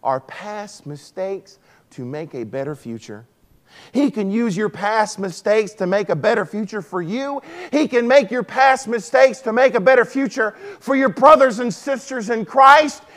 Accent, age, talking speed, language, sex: American, 40-59, 180 wpm, English, male